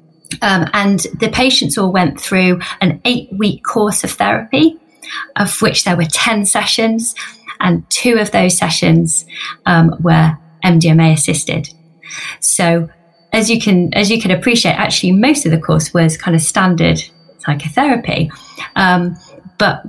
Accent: British